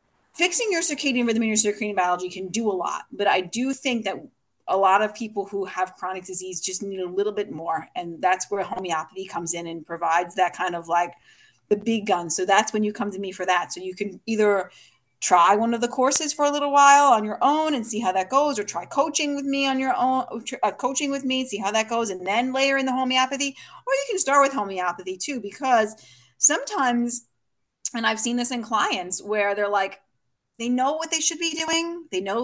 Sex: female